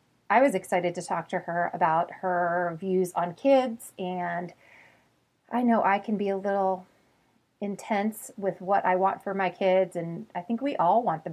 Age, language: 30-49, English